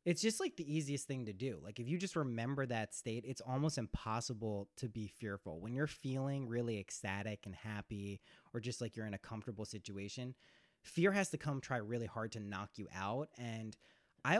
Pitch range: 115-160 Hz